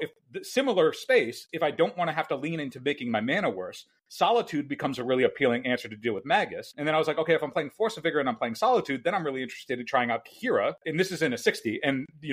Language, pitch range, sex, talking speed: English, 130-165 Hz, male, 285 wpm